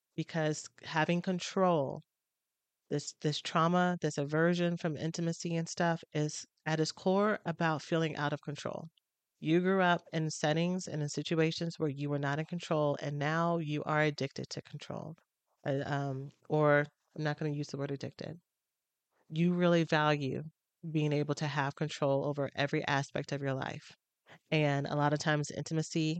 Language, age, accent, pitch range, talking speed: English, 30-49, American, 145-165 Hz, 165 wpm